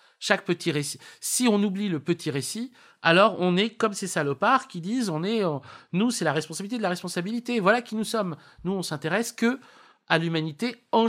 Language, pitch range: French, 145-205 Hz